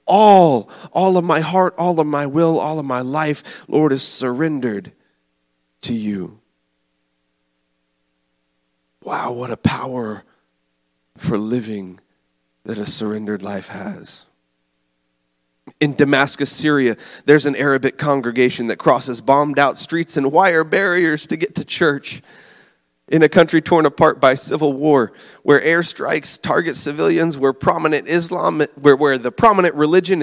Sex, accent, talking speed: male, American, 135 wpm